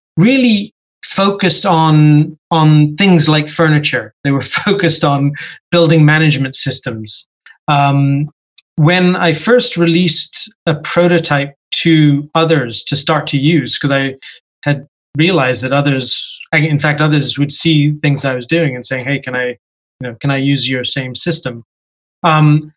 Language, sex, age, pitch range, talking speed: English, male, 30-49, 135-165 Hz, 150 wpm